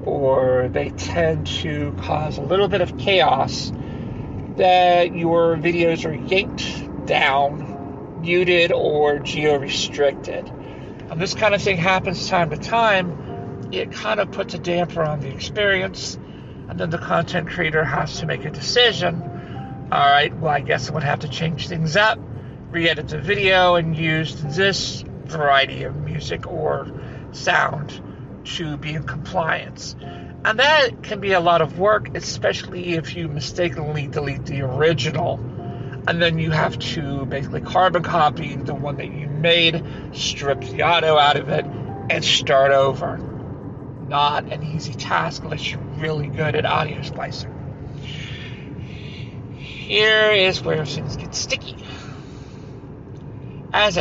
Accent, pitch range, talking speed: American, 135-170 Hz, 145 wpm